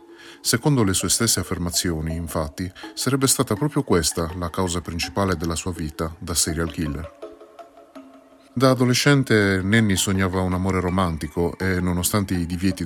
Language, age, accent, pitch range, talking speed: Italian, 30-49, native, 85-120 Hz, 140 wpm